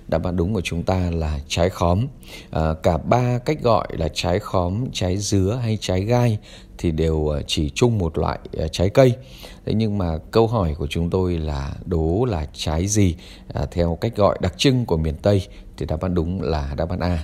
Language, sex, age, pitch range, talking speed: Vietnamese, male, 20-39, 85-110 Hz, 200 wpm